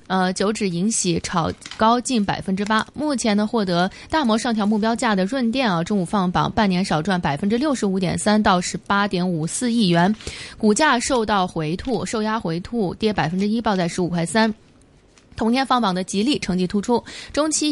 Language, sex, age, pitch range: Chinese, female, 20-39, 185-235 Hz